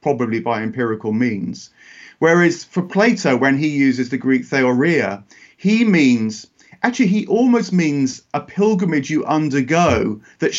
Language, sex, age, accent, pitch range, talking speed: English, male, 40-59, British, 130-175 Hz, 135 wpm